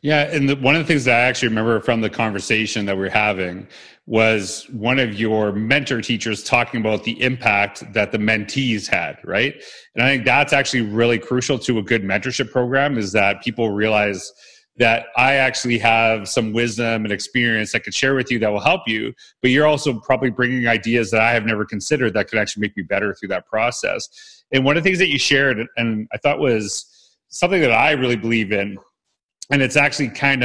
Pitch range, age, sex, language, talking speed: 110-130 Hz, 30-49, male, English, 210 wpm